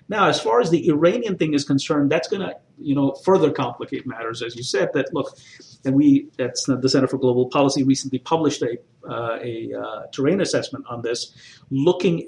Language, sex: English, male